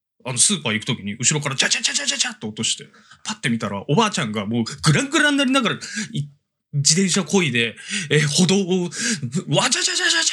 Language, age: Japanese, 20-39